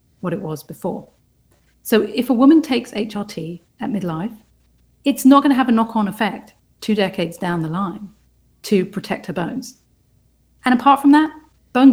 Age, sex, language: 40-59, female, English